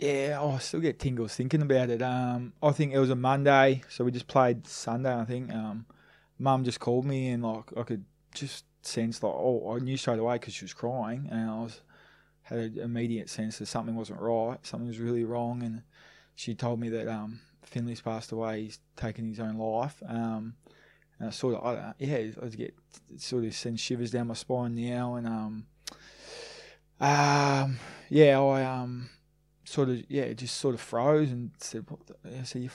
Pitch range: 115-135 Hz